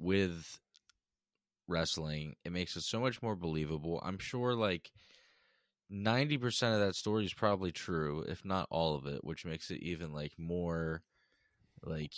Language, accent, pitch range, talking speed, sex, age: English, American, 80-105 Hz, 155 wpm, male, 10-29